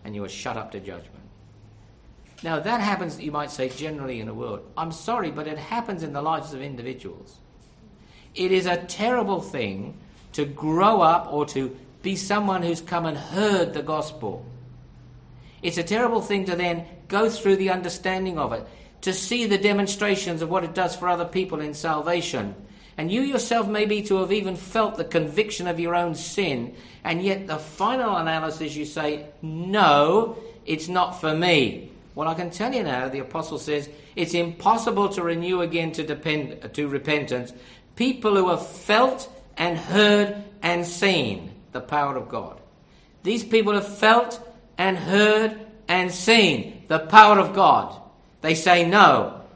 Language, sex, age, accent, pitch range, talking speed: English, male, 50-69, British, 150-200 Hz, 170 wpm